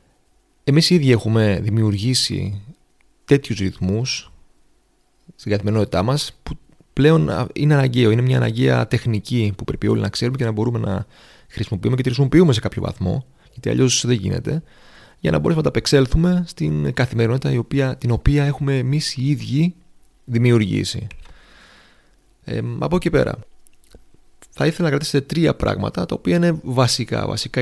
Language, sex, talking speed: Greek, male, 150 wpm